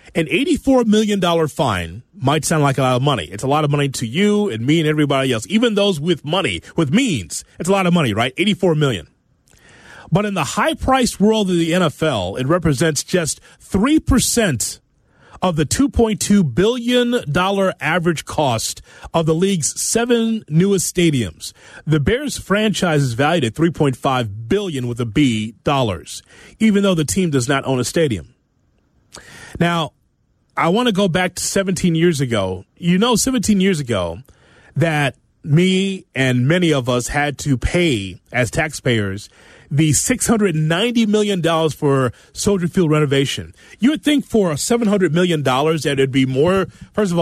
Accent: American